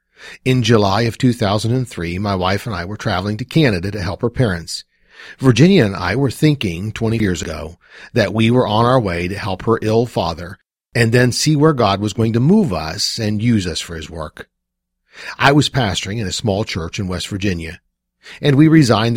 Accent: American